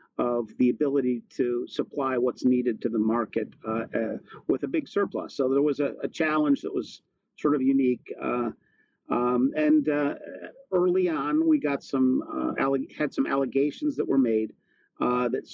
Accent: American